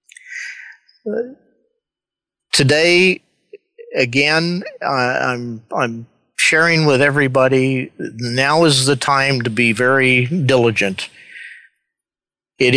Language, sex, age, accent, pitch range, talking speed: English, male, 50-69, American, 120-150 Hz, 85 wpm